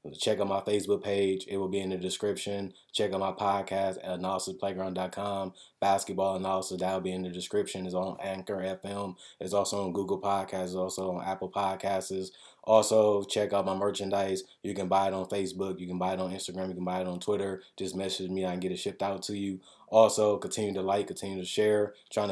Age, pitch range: 20-39, 95-100 Hz